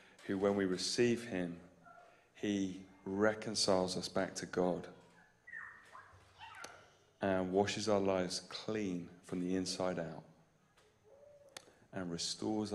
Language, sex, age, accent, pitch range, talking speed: English, male, 30-49, British, 90-105 Hz, 105 wpm